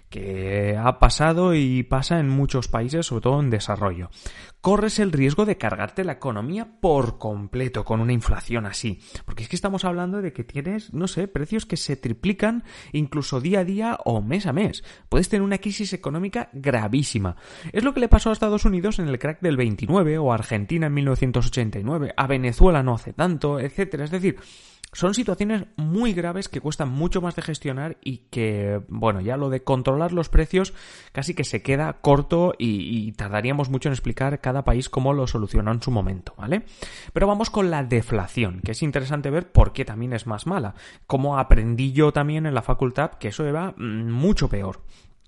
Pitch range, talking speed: 115-175 Hz, 190 wpm